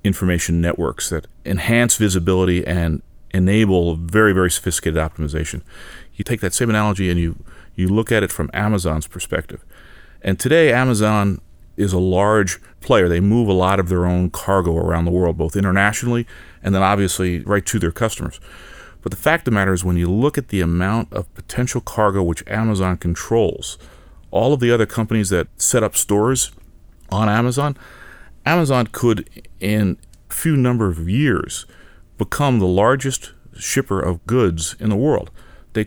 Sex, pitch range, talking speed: male, 90-110 Hz, 165 wpm